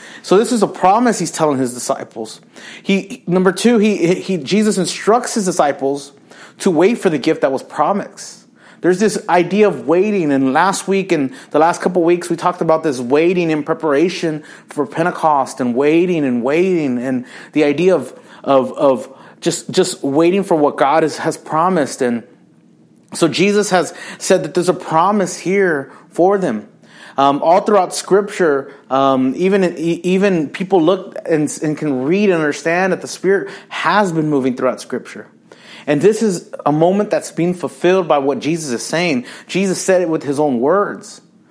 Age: 30-49